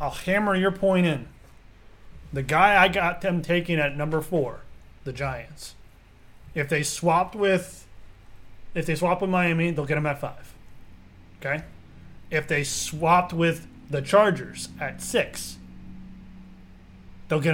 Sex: male